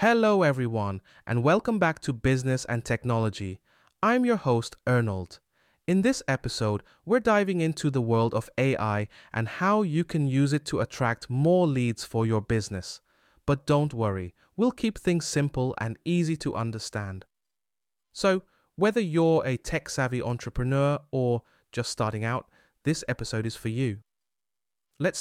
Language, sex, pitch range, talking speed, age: English, male, 115-155 Hz, 150 wpm, 30-49